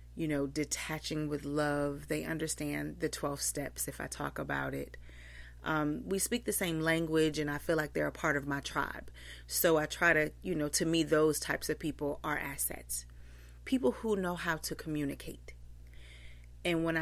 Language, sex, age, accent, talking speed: English, female, 30-49, American, 185 wpm